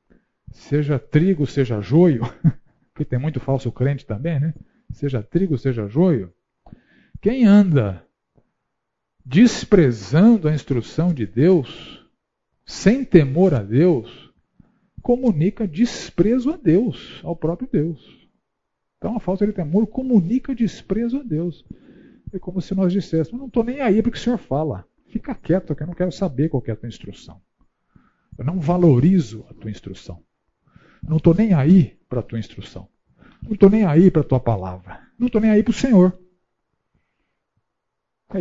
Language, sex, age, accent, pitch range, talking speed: Portuguese, male, 50-69, Brazilian, 140-220 Hz, 155 wpm